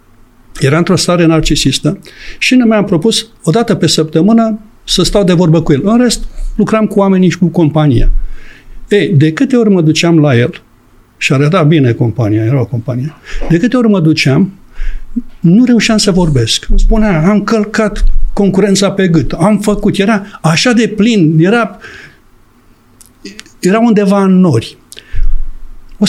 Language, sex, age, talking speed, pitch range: Romanian, male, 60-79, 155 wpm, 140-210 Hz